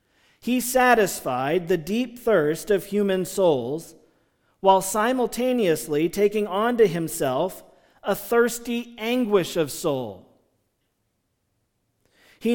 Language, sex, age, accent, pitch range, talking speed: English, male, 40-59, American, 155-210 Hz, 95 wpm